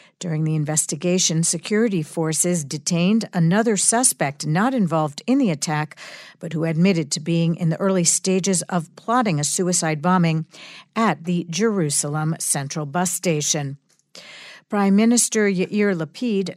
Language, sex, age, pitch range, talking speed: English, female, 50-69, 160-200 Hz, 135 wpm